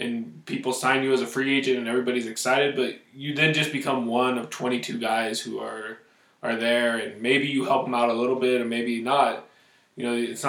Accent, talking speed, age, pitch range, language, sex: American, 225 wpm, 20-39, 120-135 Hz, English, male